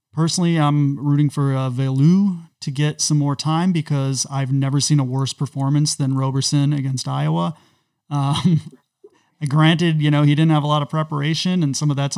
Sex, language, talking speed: male, English, 185 wpm